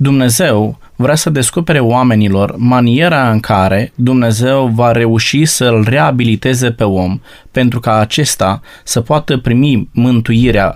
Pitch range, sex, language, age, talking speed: 120-170 Hz, male, Romanian, 20-39, 130 wpm